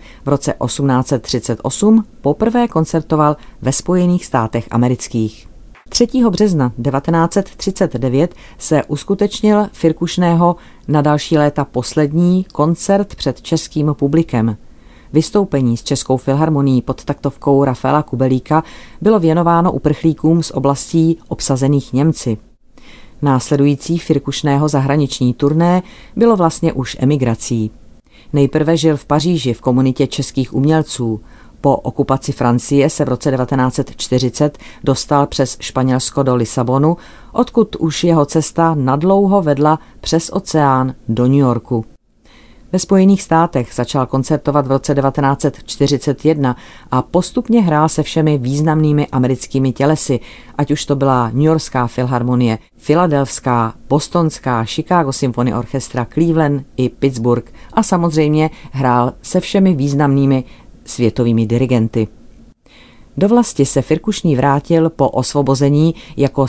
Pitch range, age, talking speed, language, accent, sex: 130-165 Hz, 40-59, 110 wpm, Czech, native, female